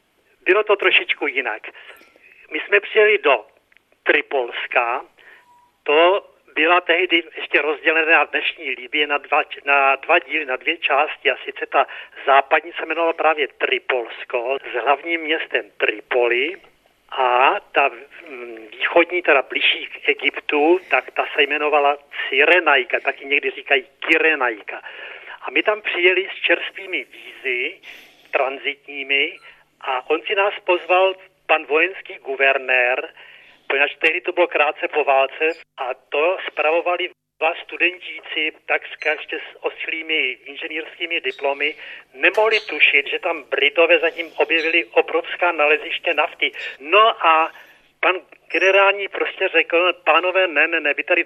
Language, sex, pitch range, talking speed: Czech, male, 150-195 Hz, 125 wpm